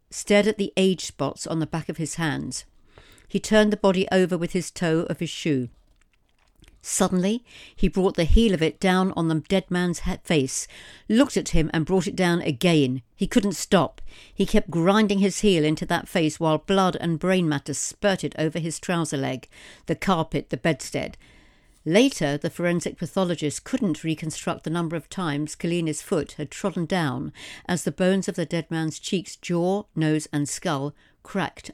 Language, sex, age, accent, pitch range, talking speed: English, female, 60-79, British, 155-195 Hz, 180 wpm